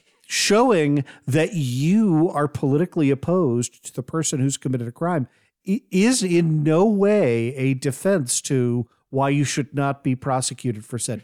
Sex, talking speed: male, 150 wpm